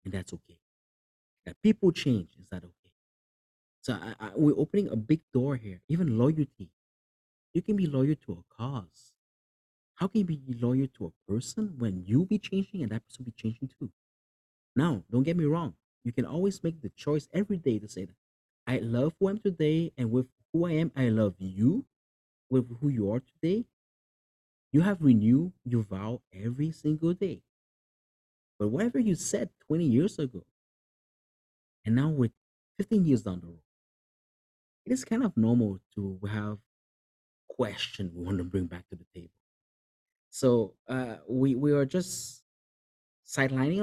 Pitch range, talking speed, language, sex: 95-155 Hz, 175 wpm, English, male